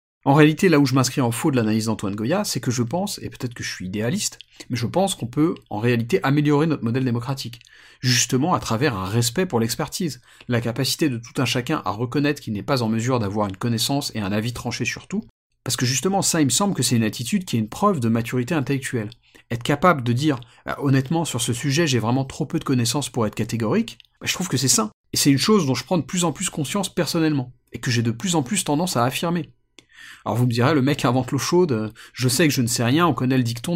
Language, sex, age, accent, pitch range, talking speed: French, male, 40-59, French, 120-155 Hz, 260 wpm